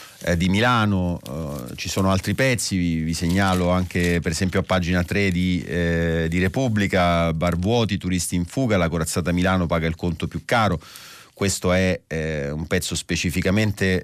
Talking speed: 165 wpm